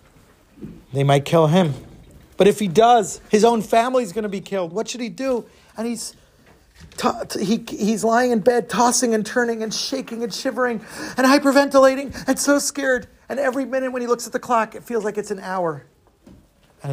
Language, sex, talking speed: English, male, 195 wpm